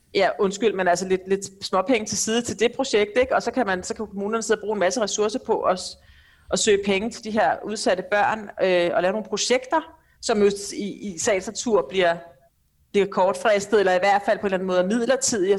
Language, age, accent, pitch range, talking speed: Danish, 40-59, native, 185-225 Hz, 235 wpm